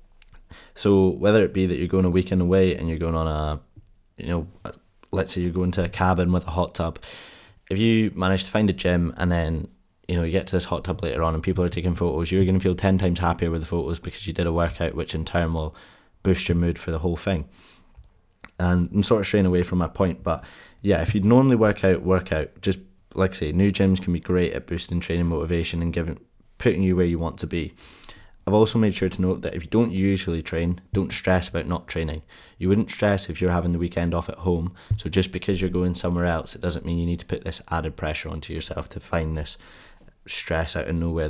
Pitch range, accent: 85-95 Hz, British